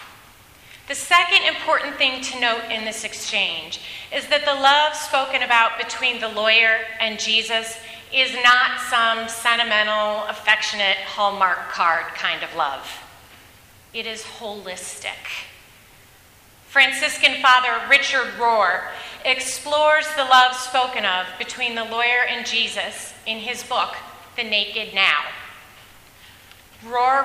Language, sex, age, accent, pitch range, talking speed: English, female, 30-49, American, 215-280 Hz, 120 wpm